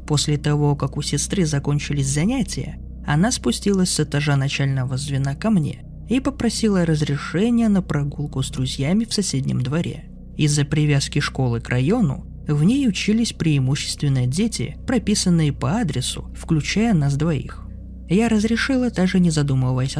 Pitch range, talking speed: 135-185 Hz, 140 wpm